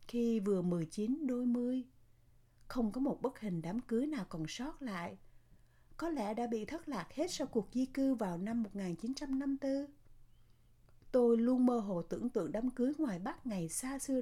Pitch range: 175-250 Hz